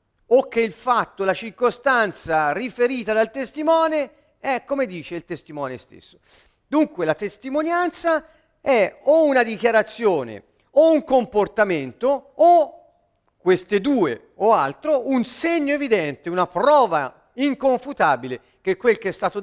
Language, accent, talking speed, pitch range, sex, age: Italian, native, 125 wpm, 185-270 Hz, male, 50-69